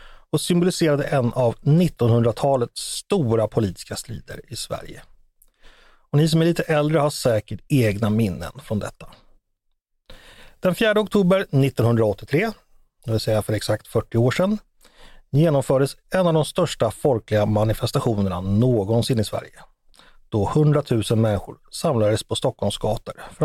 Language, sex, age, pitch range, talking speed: Swedish, male, 30-49, 115-165 Hz, 135 wpm